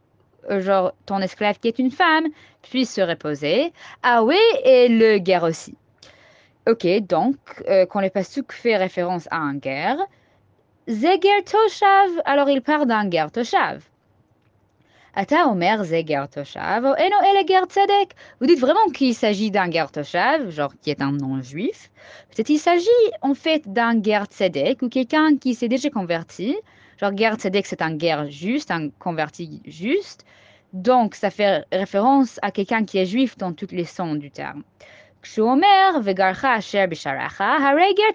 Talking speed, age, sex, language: 145 wpm, 20-39, female, French